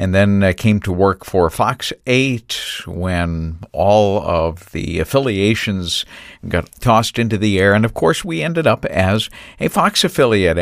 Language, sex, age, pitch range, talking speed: English, male, 50-69, 95-125 Hz, 165 wpm